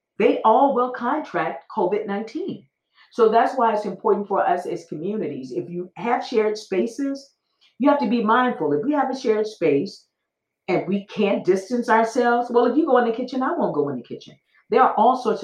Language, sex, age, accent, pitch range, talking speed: English, female, 40-59, American, 165-235 Hz, 200 wpm